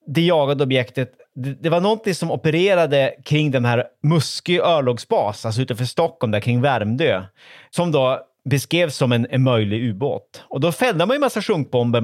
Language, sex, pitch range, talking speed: Swedish, male, 120-170 Hz, 165 wpm